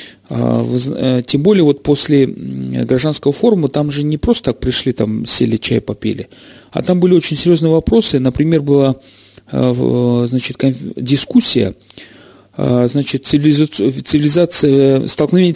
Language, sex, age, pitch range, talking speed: Russian, male, 40-59, 120-150 Hz, 110 wpm